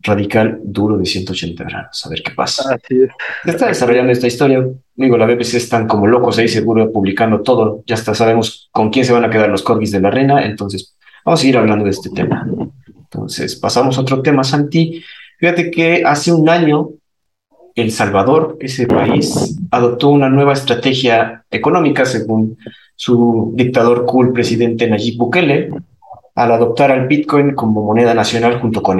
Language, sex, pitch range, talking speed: Spanish, male, 105-135 Hz, 170 wpm